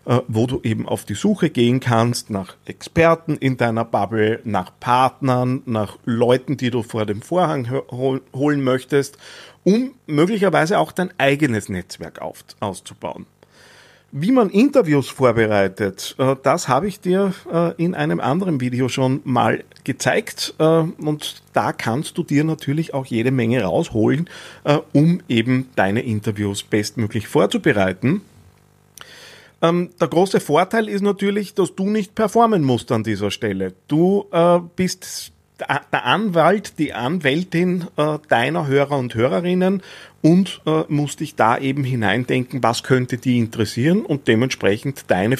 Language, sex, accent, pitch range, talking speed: German, male, Austrian, 115-170 Hz, 130 wpm